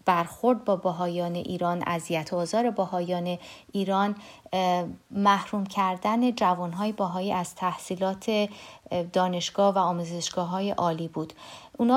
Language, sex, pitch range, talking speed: Persian, female, 180-220 Hz, 110 wpm